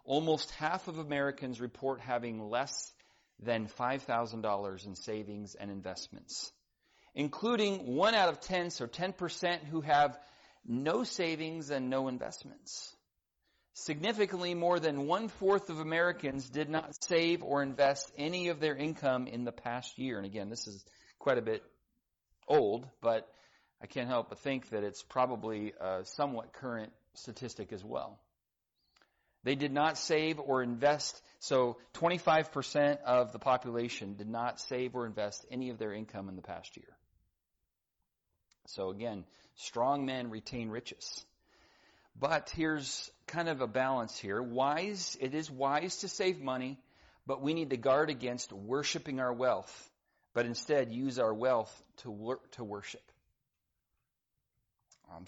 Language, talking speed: English, 145 wpm